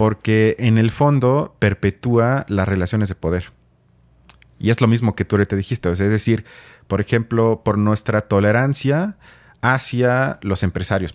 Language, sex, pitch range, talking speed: Spanish, male, 95-115 Hz, 150 wpm